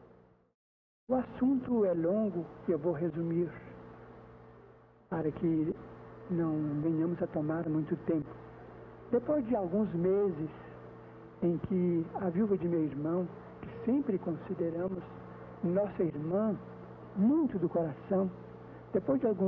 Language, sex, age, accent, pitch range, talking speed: Portuguese, male, 60-79, Brazilian, 160-195 Hz, 110 wpm